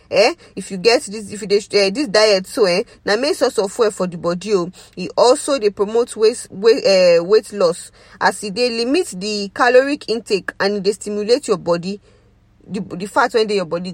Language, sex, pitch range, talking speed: English, female, 190-265 Hz, 195 wpm